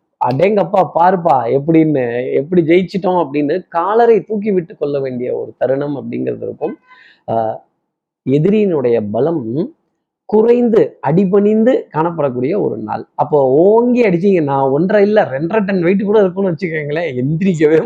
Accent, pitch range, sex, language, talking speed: native, 140-190 Hz, male, Tamil, 115 wpm